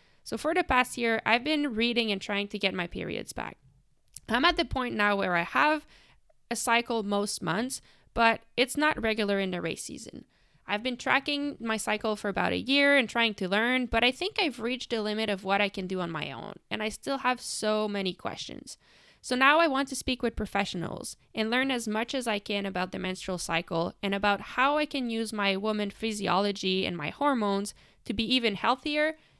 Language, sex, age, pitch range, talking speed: French, female, 20-39, 200-255 Hz, 215 wpm